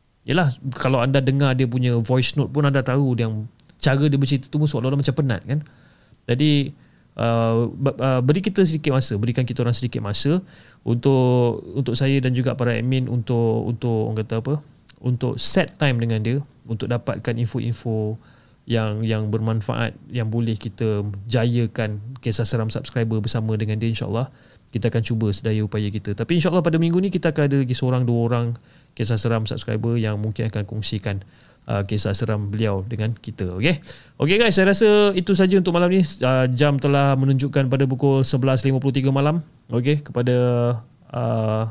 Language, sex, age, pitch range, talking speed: Malay, male, 30-49, 110-140 Hz, 170 wpm